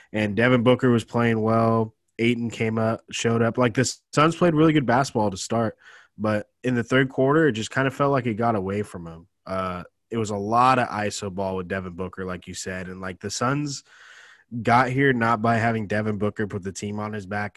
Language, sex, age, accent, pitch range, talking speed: English, male, 20-39, American, 100-120 Hz, 230 wpm